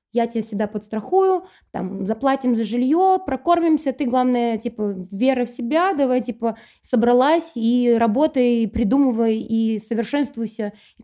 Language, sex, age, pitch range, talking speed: Russian, female, 20-39, 220-280 Hz, 135 wpm